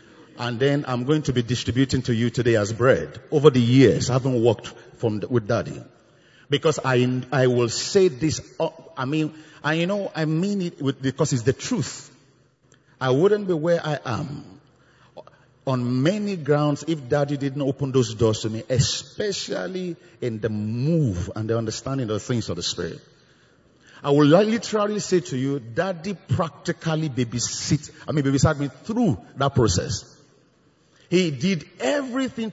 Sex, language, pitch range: male, English, 130-165 Hz